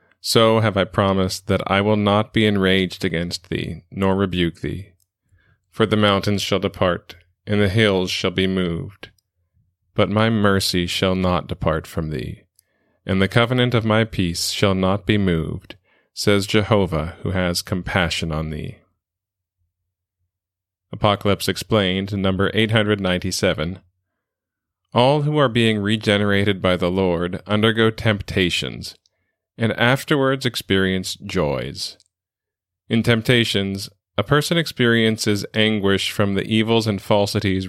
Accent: American